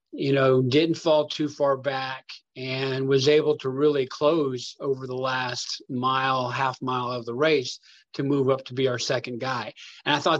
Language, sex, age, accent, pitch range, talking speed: English, male, 40-59, American, 125-150 Hz, 190 wpm